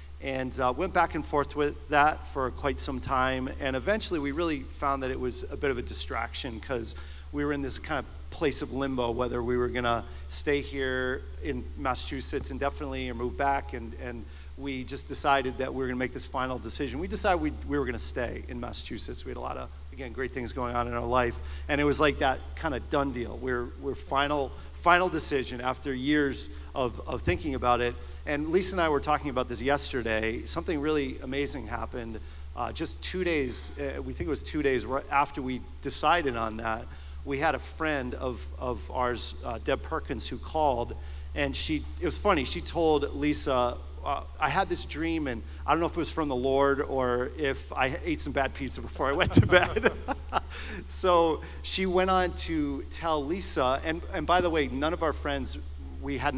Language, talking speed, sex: English, 210 wpm, male